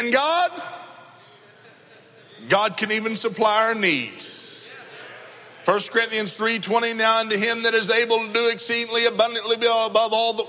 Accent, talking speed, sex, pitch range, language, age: American, 130 wpm, male, 160-230 Hz, English, 50-69